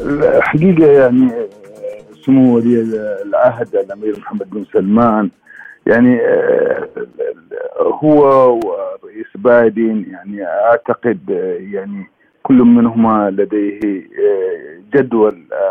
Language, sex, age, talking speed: Arabic, male, 50-69, 75 wpm